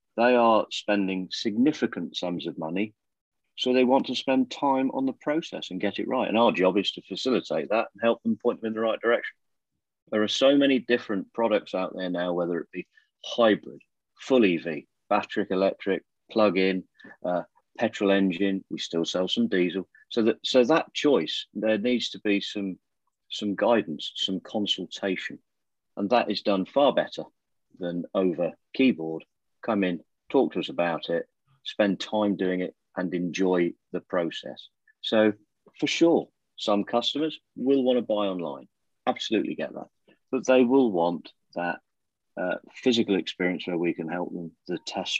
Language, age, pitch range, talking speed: English, 40-59, 90-115 Hz, 165 wpm